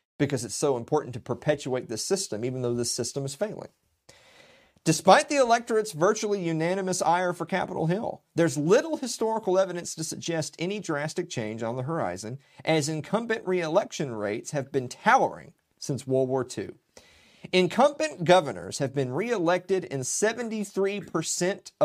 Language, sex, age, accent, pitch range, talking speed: English, male, 40-59, American, 135-185 Hz, 150 wpm